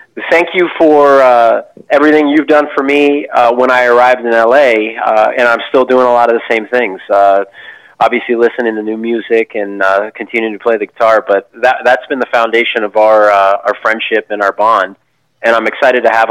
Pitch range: 115-145 Hz